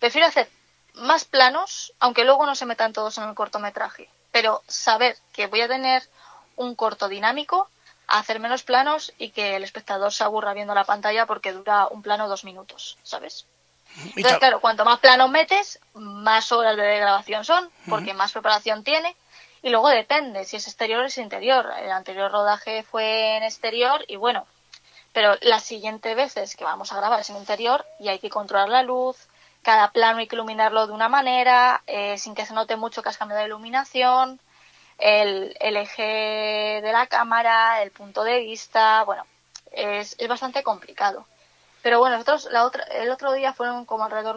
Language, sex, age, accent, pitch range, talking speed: Spanish, female, 20-39, Spanish, 210-255 Hz, 185 wpm